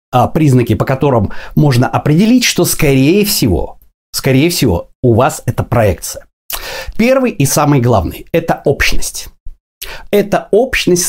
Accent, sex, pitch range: native, male, 125-175 Hz